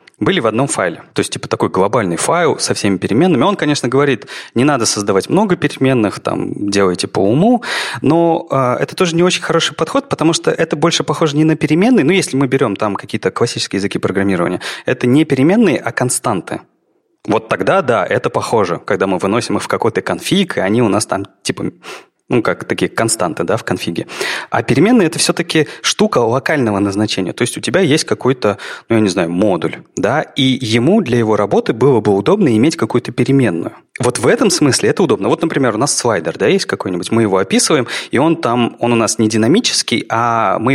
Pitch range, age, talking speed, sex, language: 110-160 Hz, 30-49, 200 wpm, male, Russian